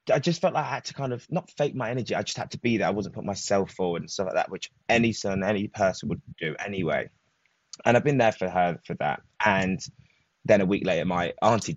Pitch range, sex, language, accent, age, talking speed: 95-130 Hz, male, English, British, 20-39, 260 wpm